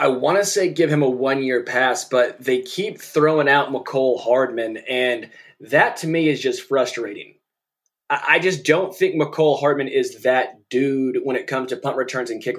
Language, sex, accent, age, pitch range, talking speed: English, male, American, 20-39, 140-180 Hz, 190 wpm